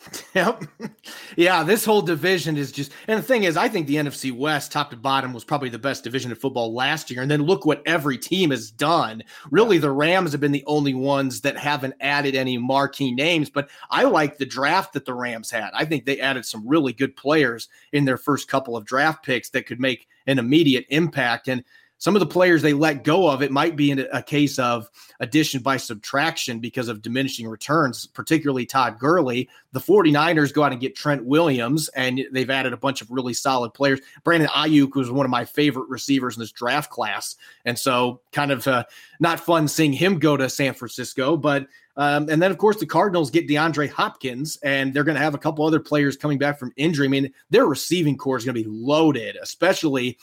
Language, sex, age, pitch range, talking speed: English, male, 30-49, 125-150 Hz, 215 wpm